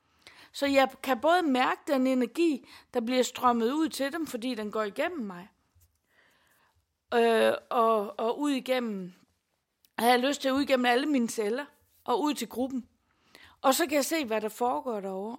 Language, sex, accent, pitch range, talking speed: Danish, female, native, 215-280 Hz, 180 wpm